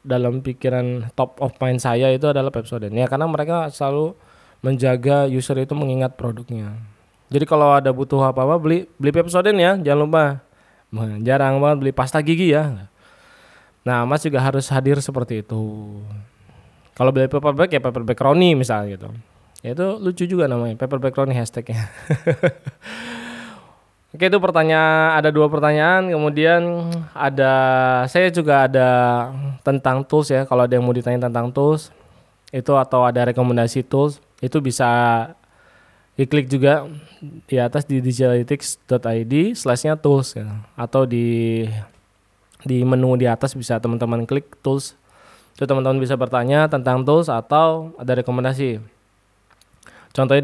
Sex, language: male, Indonesian